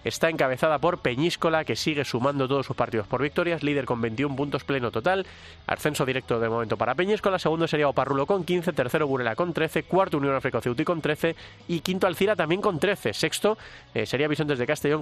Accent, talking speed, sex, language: Spanish, 205 wpm, male, Spanish